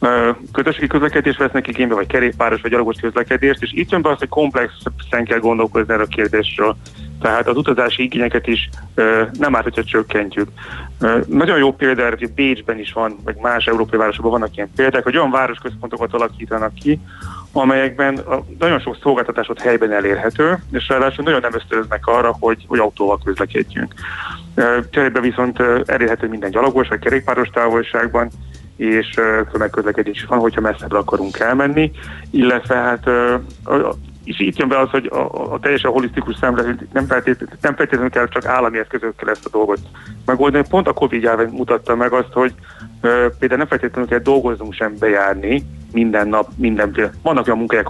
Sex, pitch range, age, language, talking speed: male, 110-130 Hz, 30-49, Hungarian, 160 wpm